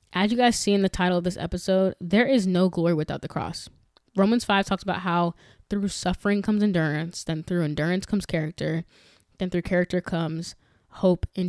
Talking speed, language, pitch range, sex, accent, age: 195 wpm, English, 170-195 Hz, female, American, 10-29